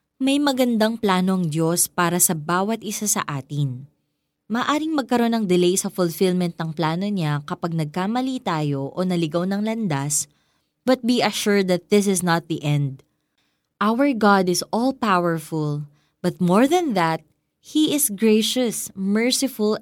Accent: native